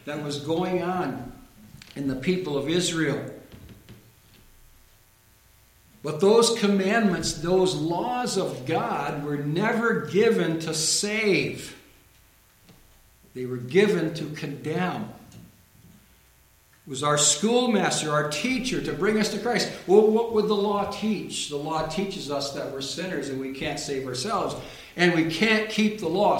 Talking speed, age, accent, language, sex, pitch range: 135 wpm, 60-79, American, English, male, 160-215 Hz